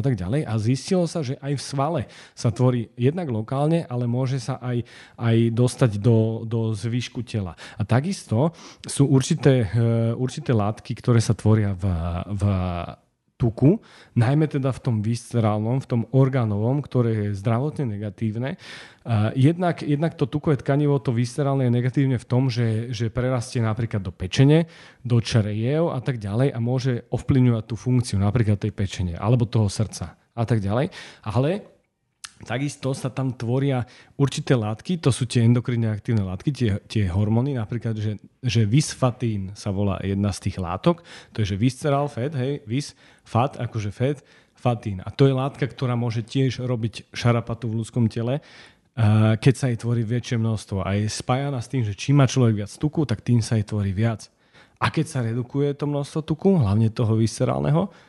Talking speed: 170 wpm